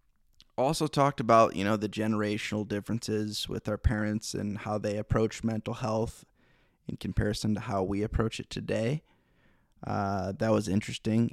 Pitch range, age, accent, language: 100-110 Hz, 20-39, American, English